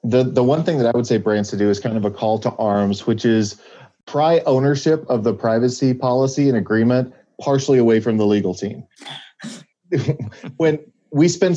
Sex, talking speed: male, 190 wpm